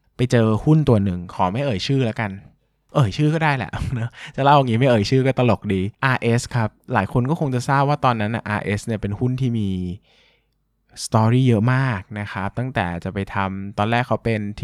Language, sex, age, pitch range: Thai, male, 20-39, 100-130 Hz